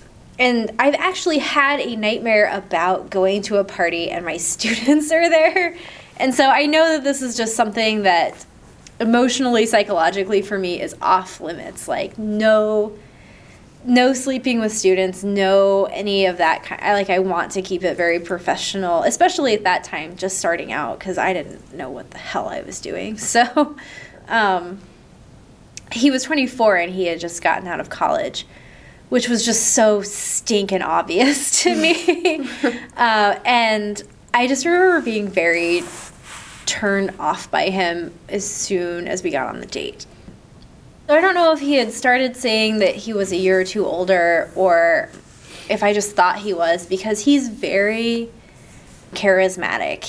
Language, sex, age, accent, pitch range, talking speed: English, female, 20-39, American, 185-250 Hz, 165 wpm